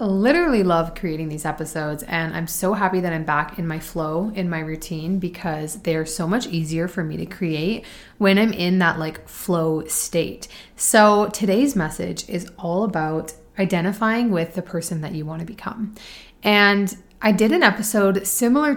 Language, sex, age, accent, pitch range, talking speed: English, female, 30-49, American, 170-210 Hz, 175 wpm